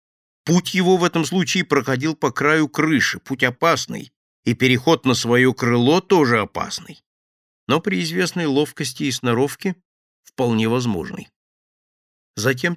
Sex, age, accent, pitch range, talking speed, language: male, 50-69, native, 105-135 Hz, 125 wpm, Russian